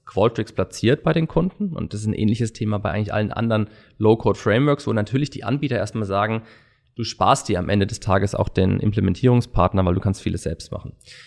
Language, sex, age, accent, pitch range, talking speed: German, male, 20-39, German, 105-120 Hz, 200 wpm